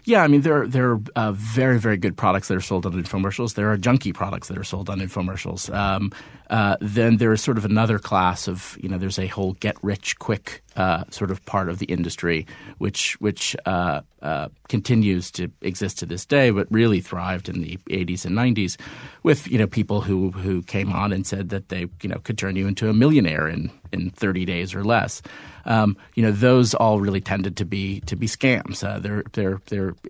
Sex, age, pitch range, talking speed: male, 40-59, 95-110 Hz, 225 wpm